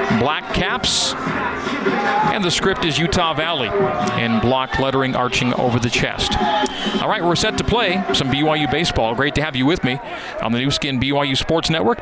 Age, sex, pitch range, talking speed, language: 40-59, male, 125-175 Hz, 185 wpm, English